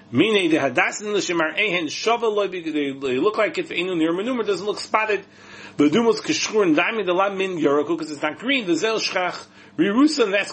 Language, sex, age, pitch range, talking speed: English, male, 40-59, 150-235 Hz, 85 wpm